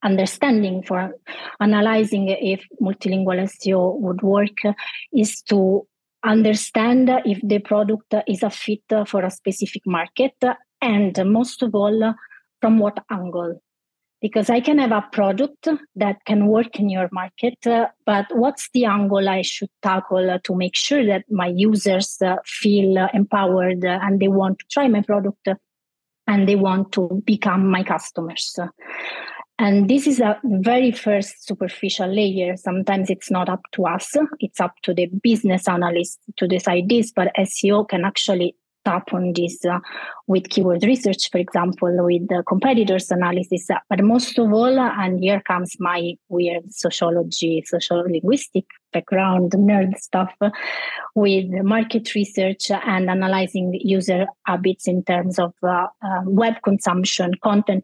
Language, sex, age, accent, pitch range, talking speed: English, female, 30-49, Italian, 185-215 Hz, 145 wpm